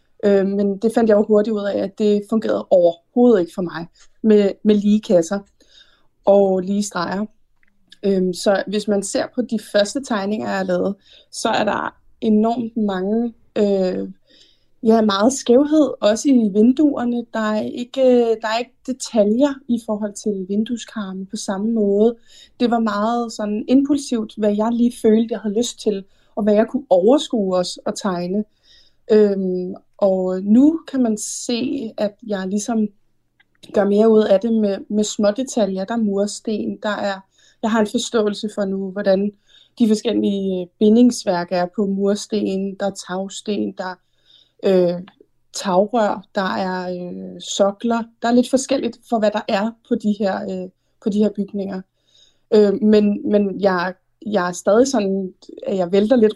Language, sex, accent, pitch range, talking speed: Danish, female, native, 195-230 Hz, 160 wpm